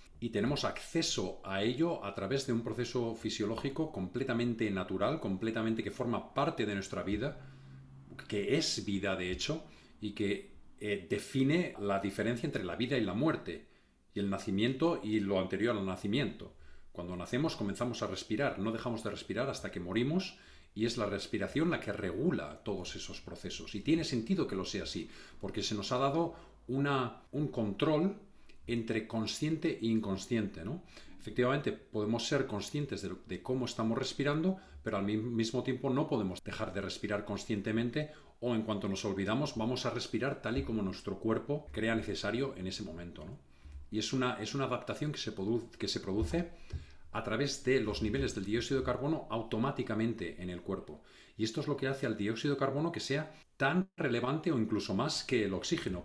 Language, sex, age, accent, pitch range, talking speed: Spanish, male, 40-59, Spanish, 100-135 Hz, 175 wpm